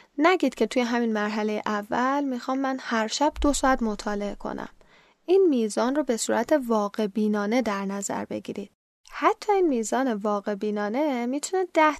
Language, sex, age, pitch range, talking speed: Persian, female, 10-29, 215-290 Hz, 155 wpm